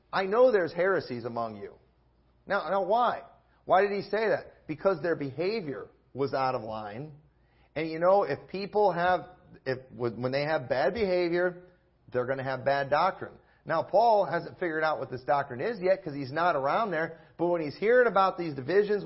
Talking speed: 190 wpm